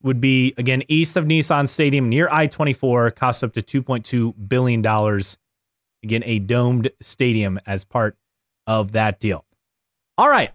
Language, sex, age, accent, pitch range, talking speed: English, male, 30-49, American, 115-155 Hz, 140 wpm